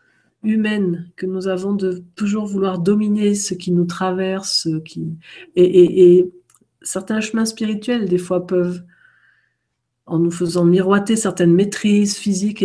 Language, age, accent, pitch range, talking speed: French, 50-69, French, 170-205 Hz, 140 wpm